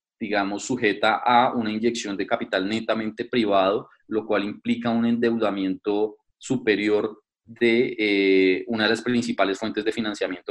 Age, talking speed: 30-49, 135 wpm